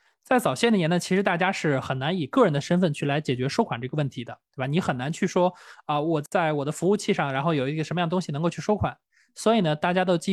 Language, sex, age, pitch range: Chinese, male, 20-39, 150-200 Hz